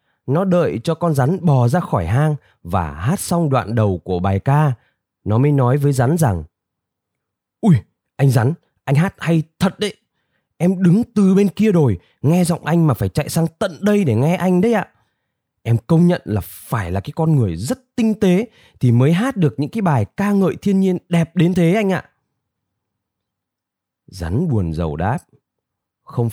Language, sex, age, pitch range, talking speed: Vietnamese, male, 20-39, 115-175 Hz, 190 wpm